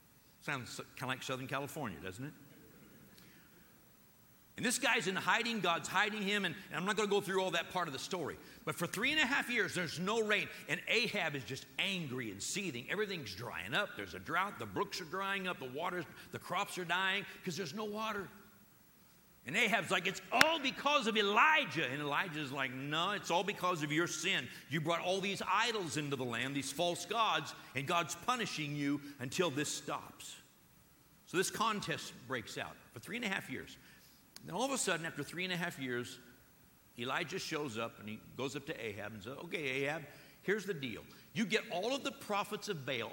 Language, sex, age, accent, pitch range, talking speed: English, male, 50-69, American, 140-195 Hz, 205 wpm